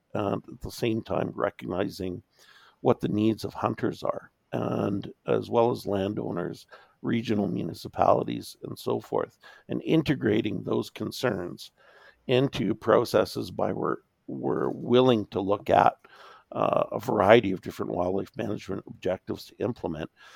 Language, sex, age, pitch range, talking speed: English, male, 50-69, 95-115 Hz, 135 wpm